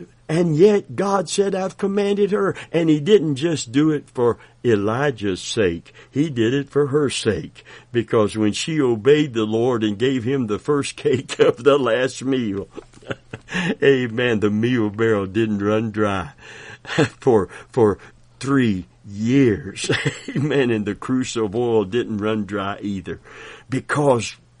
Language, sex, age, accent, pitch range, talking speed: English, male, 60-79, American, 105-150 Hz, 145 wpm